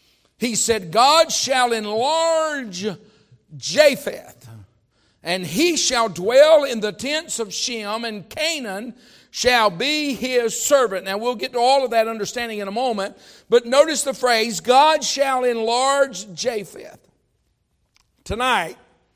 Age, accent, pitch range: 60-79, American, 190-255 Hz